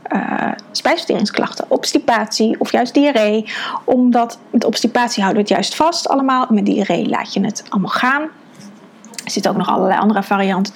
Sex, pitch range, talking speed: female, 215-255 Hz, 165 wpm